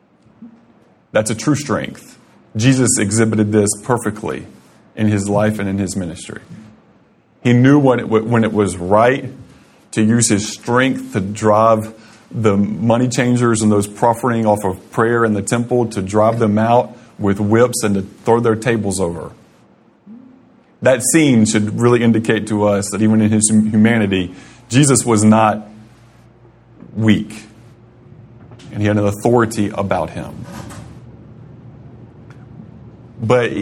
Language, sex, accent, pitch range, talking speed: English, male, American, 105-120 Hz, 135 wpm